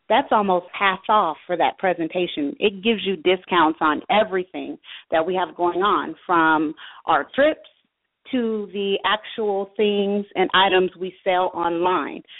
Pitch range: 185-250 Hz